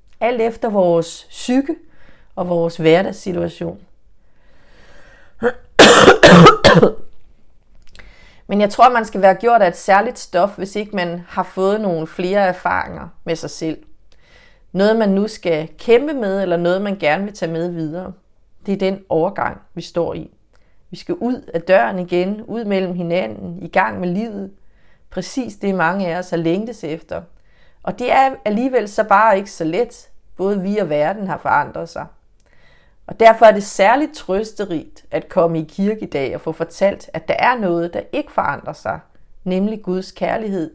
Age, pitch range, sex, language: 30-49, 170-215 Hz, female, English